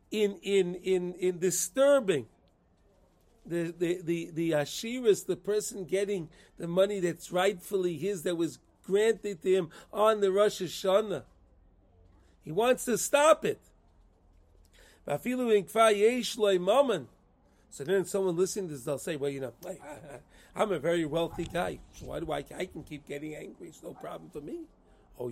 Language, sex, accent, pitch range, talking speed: English, male, American, 170-220 Hz, 155 wpm